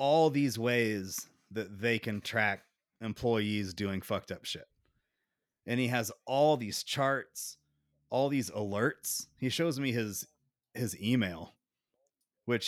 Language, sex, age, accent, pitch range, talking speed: English, male, 30-49, American, 105-125 Hz, 135 wpm